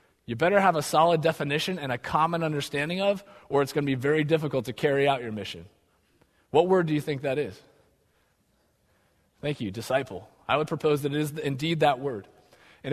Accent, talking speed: American, 200 wpm